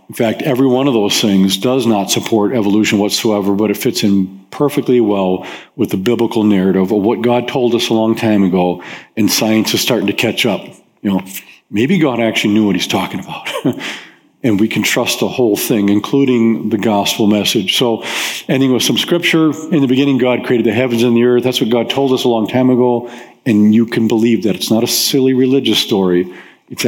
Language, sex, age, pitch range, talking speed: English, male, 50-69, 105-125 Hz, 210 wpm